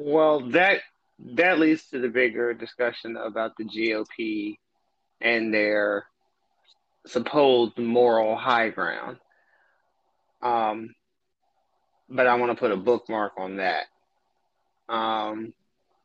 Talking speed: 105 wpm